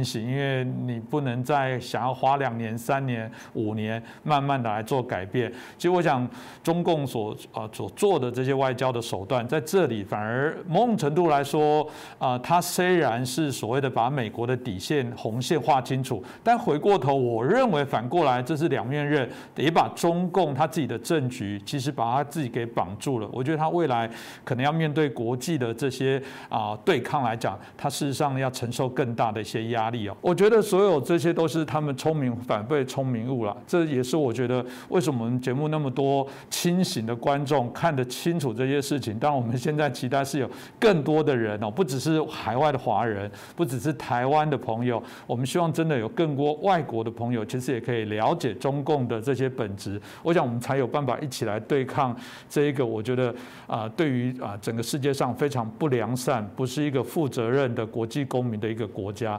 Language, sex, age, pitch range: Chinese, male, 50-69, 120-150 Hz